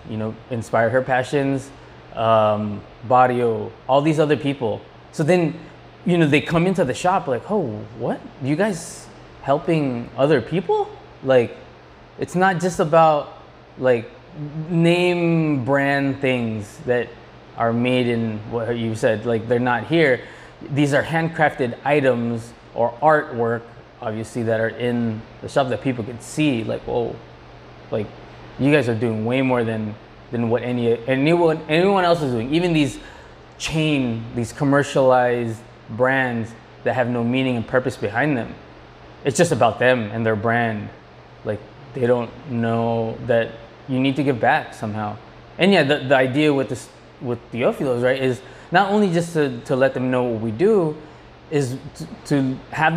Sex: male